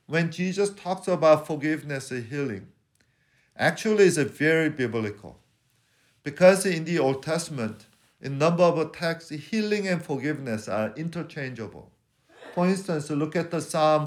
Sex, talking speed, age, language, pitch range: male, 135 wpm, 50-69, English, 120-155 Hz